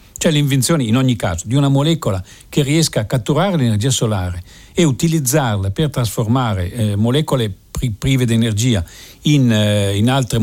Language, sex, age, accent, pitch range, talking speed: Italian, male, 50-69, native, 100-130 Hz, 155 wpm